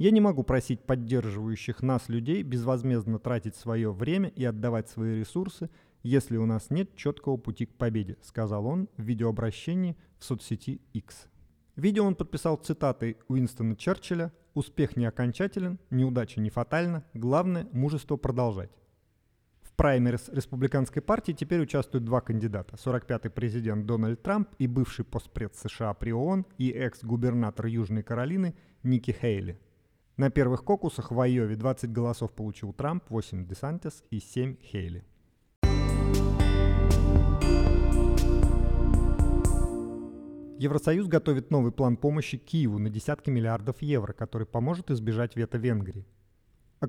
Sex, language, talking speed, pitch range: male, Russian, 125 wpm, 110-145 Hz